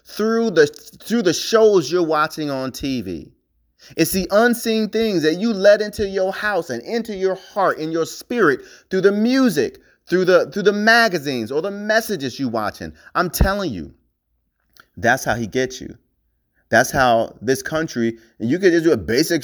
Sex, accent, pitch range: male, American, 155-210 Hz